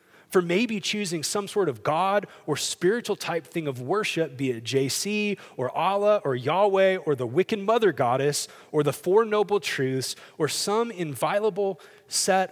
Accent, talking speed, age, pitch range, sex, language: American, 165 wpm, 30-49, 150-195 Hz, male, English